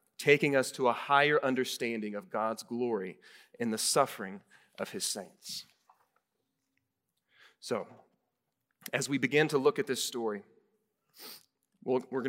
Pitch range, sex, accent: 120-150 Hz, male, American